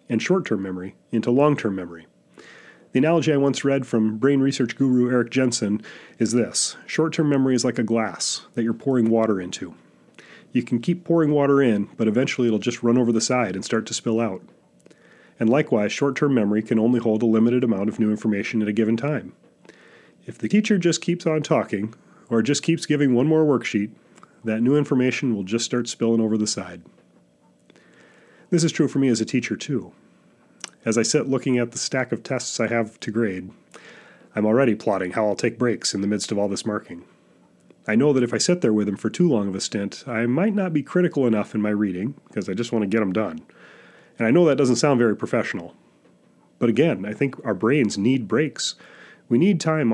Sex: male